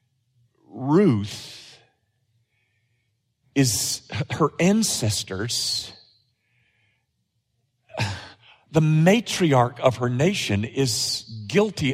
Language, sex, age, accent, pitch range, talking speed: English, male, 50-69, American, 110-155 Hz, 55 wpm